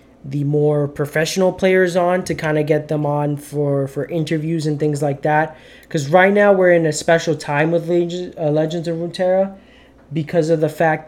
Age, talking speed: 20-39, 195 wpm